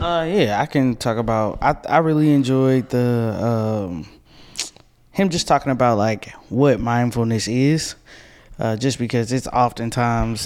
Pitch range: 110-130 Hz